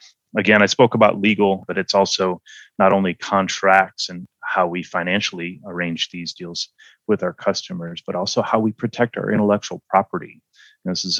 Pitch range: 90-100 Hz